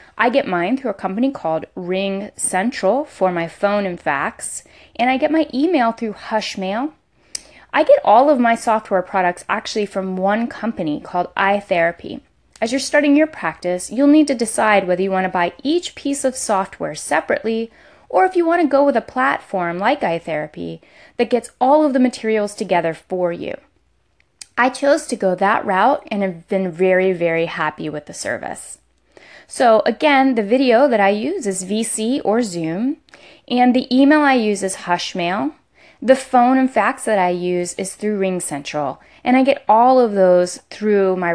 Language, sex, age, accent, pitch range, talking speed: English, female, 20-39, American, 190-270 Hz, 180 wpm